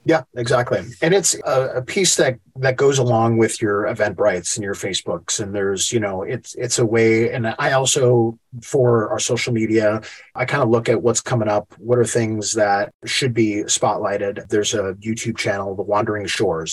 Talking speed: 195 wpm